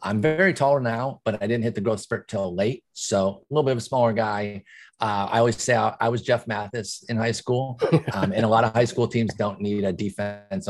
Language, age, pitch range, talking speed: English, 30-49, 105-130 Hz, 250 wpm